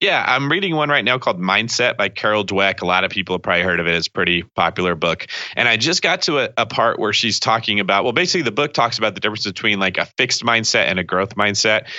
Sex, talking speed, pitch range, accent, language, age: male, 270 wpm, 95-125 Hz, American, English, 30-49